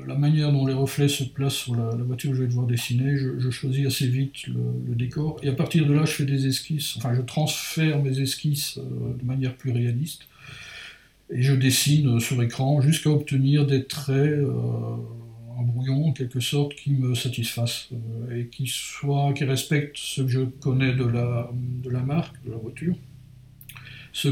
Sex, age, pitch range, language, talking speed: male, 60-79, 125-140 Hz, French, 195 wpm